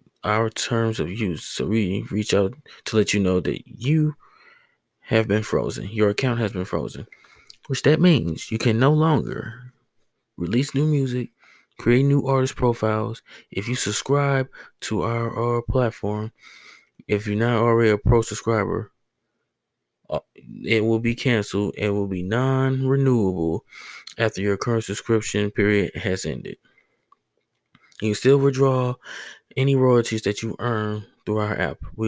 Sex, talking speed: male, 145 wpm